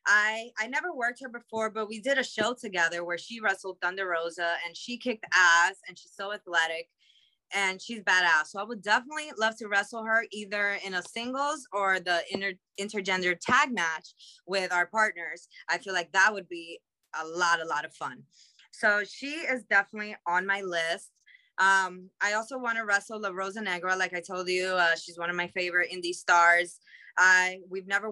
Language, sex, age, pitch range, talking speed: English, female, 20-39, 175-230 Hz, 195 wpm